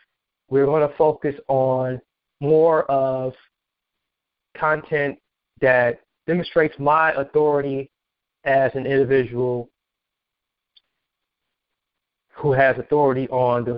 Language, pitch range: English, 125-145 Hz